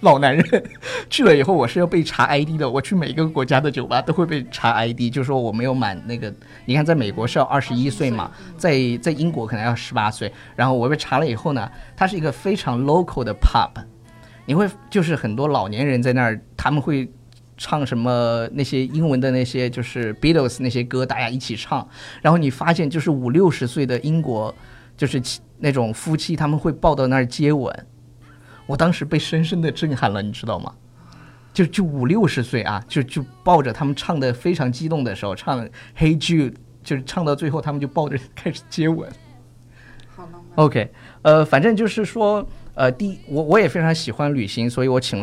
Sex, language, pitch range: male, Chinese, 120-160 Hz